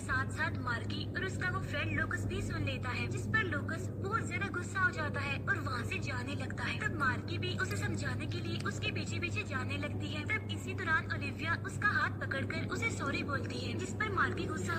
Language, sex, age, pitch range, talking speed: English, female, 20-39, 100-110 Hz, 225 wpm